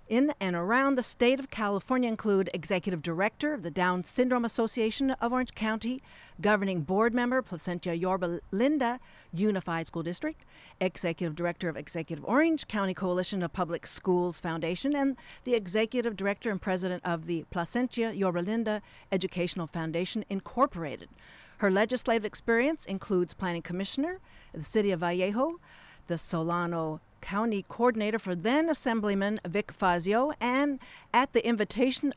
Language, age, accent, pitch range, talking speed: English, 50-69, American, 175-235 Hz, 140 wpm